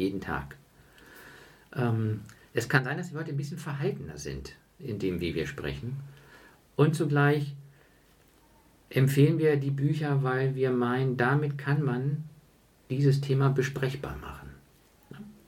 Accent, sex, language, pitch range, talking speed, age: German, male, German, 120-150 Hz, 130 wpm, 50-69